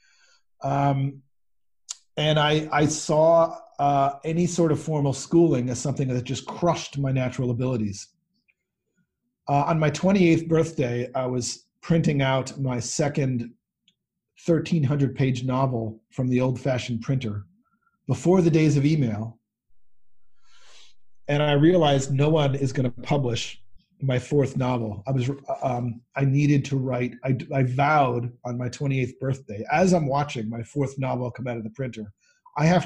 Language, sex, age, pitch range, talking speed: English, male, 40-59, 125-150 Hz, 150 wpm